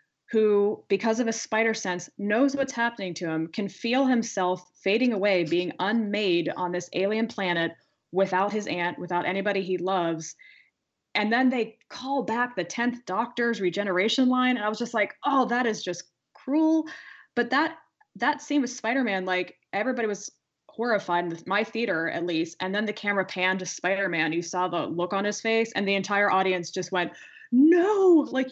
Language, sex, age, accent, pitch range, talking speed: English, female, 20-39, American, 180-235 Hz, 180 wpm